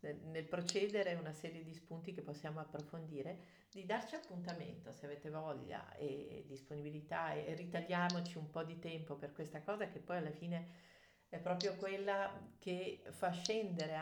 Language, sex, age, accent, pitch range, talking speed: Italian, female, 50-69, native, 155-180 Hz, 155 wpm